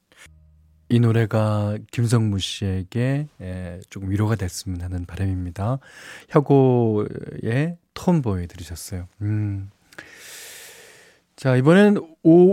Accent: native